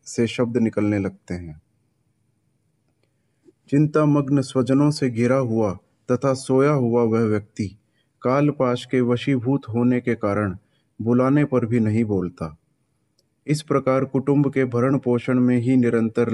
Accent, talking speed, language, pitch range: native, 130 wpm, Hindi, 110-135 Hz